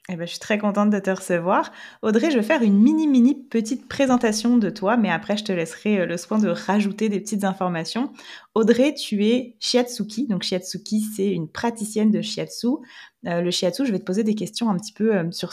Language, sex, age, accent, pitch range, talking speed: French, female, 20-39, French, 185-235 Hz, 210 wpm